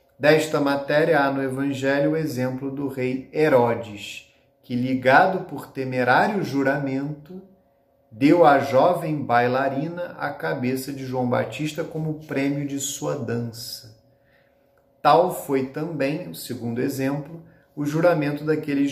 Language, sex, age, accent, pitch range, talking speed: Portuguese, male, 40-59, Brazilian, 125-155 Hz, 120 wpm